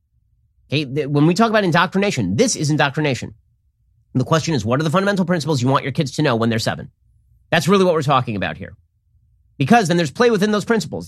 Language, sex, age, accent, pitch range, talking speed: English, male, 30-49, American, 125-180 Hz, 220 wpm